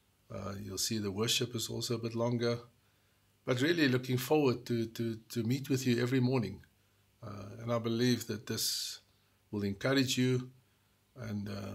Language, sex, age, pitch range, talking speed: English, male, 50-69, 105-135 Hz, 165 wpm